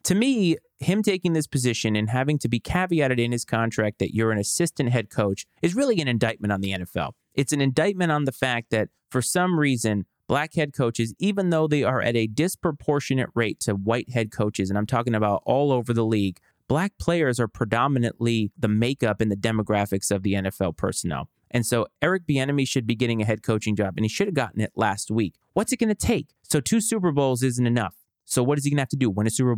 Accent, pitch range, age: American, 110-145 Hz, 30-49